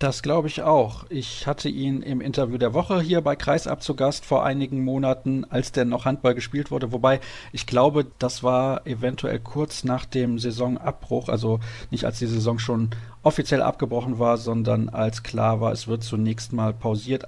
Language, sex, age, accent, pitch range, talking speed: German, male, 40-59, German, 120-135 Hz, 185 wpm